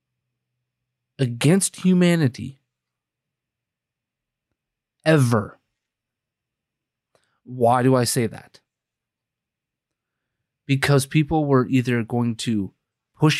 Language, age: English, 30-49